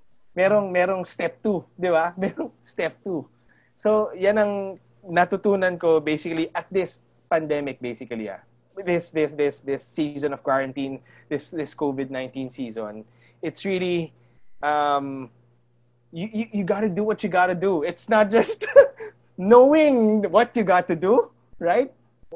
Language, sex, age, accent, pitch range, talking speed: English, male, 20-39, Filipino, 165-230 Hz, 140 wpm